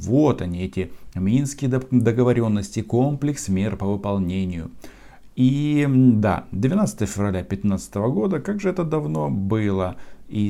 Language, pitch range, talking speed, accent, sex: Russian, 95-135 Hz, 120 wpm, native, male